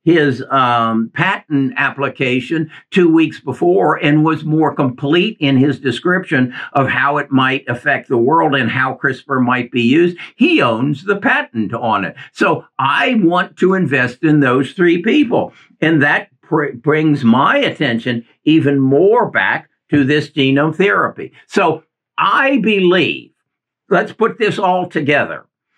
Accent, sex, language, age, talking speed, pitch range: American, male, English, 60-79, 145 wpm, 135-180 Hz